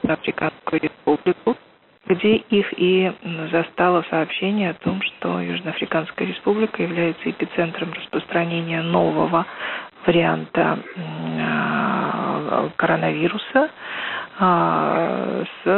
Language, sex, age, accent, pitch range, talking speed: Russian, female, 40-59, native, 165-215 Hz, 70 wpm